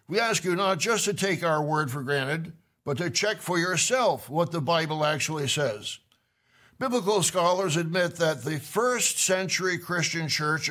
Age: 60-79